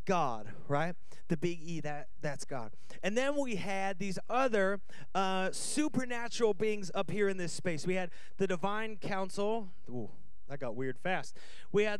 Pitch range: 165-220 Hz